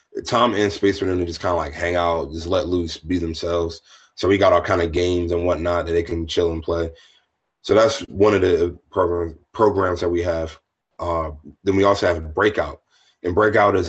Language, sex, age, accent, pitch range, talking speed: English, male, 30-49, American, 85-105 Hz, 220 wpm